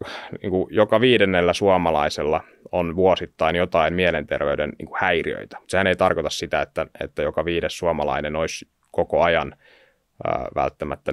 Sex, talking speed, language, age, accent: male, 130 wpm, Finnish, 30-49, native